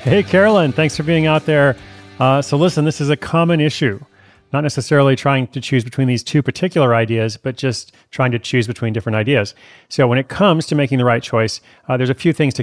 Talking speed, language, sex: 230 wpm, English, male